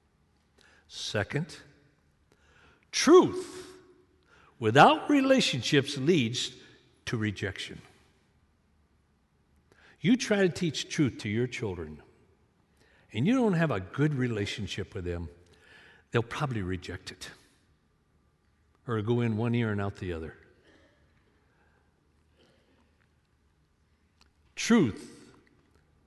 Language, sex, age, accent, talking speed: English, male, 60-79, American, 85 wpm